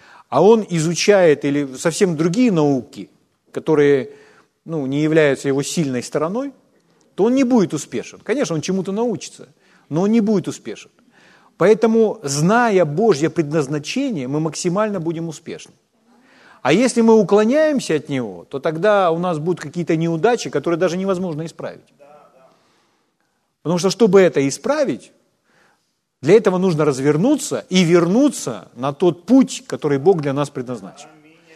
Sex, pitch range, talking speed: male, 150-215 Hz, 135 wpm